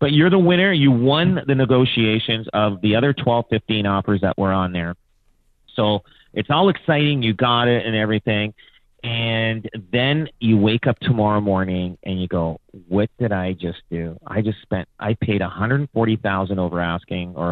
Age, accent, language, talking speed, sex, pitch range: 40-59, American, English, 175 wpm, male, 100-125 Hz